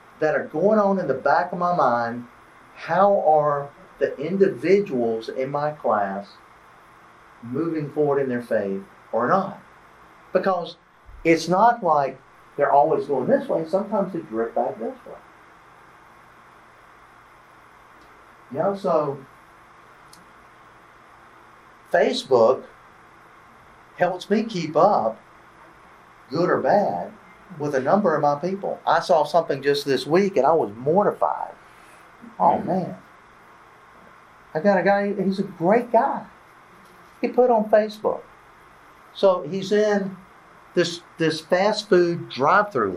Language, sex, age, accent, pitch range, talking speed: English, male, 50-69, American, 145-195 Hz, 125 wpm